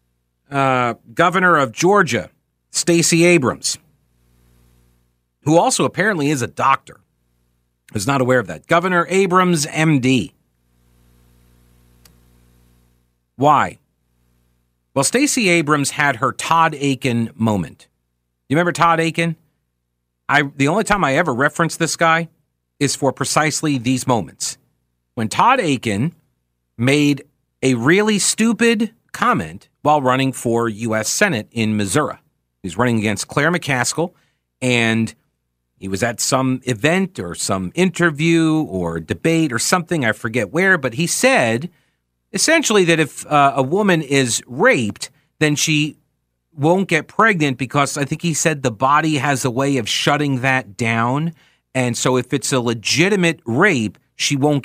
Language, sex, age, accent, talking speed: English, male, 40-59, American, 135 wpm